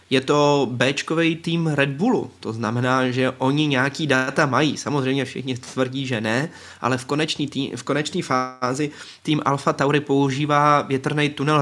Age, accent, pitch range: 20-39, native, 130-165 Hz